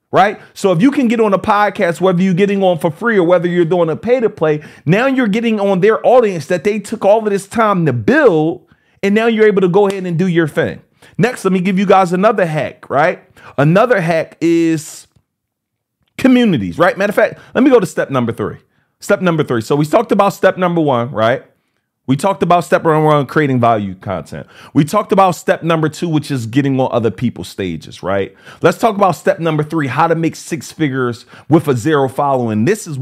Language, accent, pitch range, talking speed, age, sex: English, American, 135-195 Hz, 225 wpm, 30-49, male